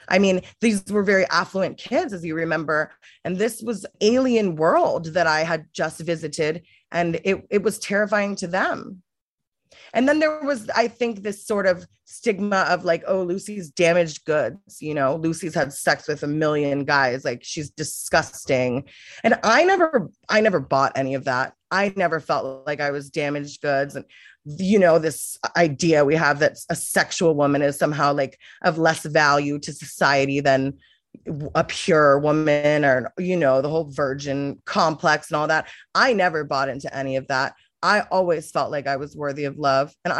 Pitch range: 145-190 Hz